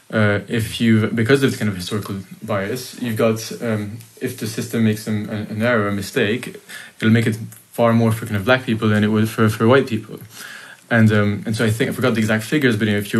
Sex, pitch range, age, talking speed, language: male, 105-115 Hz, 20-39, 250 wpm, English